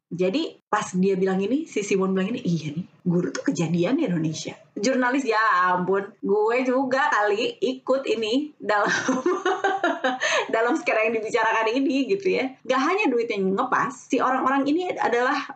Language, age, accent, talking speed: Indonesian, 20-39, native, 160 wpm